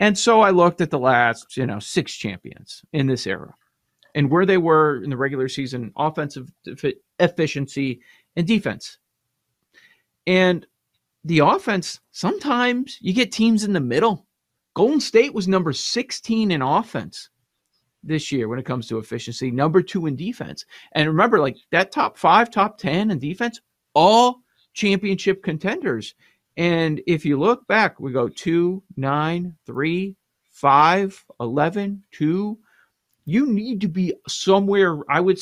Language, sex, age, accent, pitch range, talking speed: English, male, 40-59, American, 135-190 Hz, 140 wpm